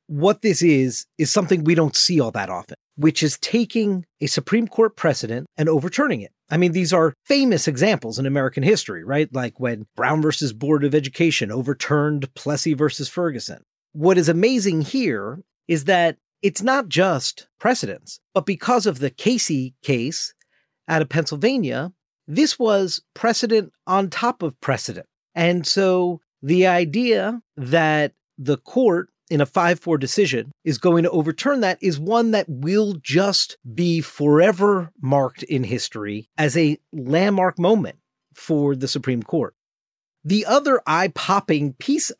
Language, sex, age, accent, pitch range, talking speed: English, male, 40-59, American, 145-200 Hz, 150 wpm